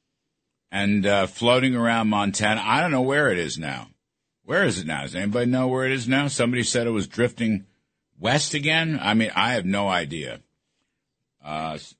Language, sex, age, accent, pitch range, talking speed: English, male, 60-79, American, 100-130 Hz, 185 wpm